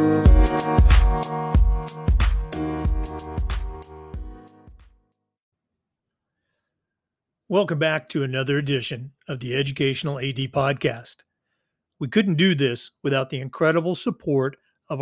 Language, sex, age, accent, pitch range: English, male, 50-69, American, 130-165 Hz